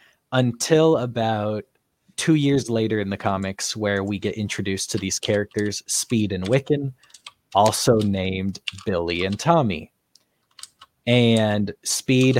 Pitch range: 100-125 Hz